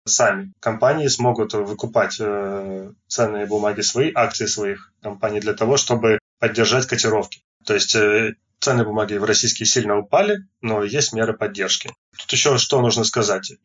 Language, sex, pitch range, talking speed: Russian, male, 105-125 Hz, 150 wpm